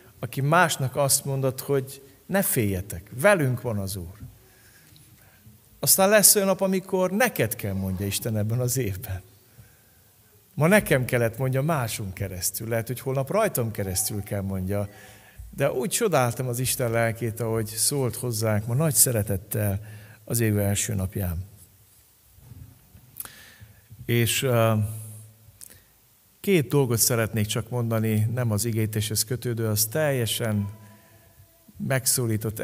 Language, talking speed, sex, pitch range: Hungarian, 120 wpm, male, 105-125 Hz